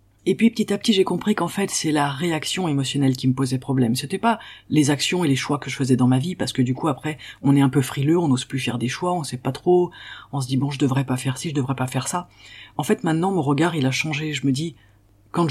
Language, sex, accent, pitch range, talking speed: French, female, French, 130-175 Hz, 300 wpm